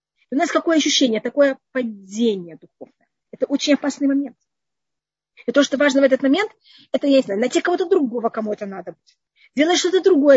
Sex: female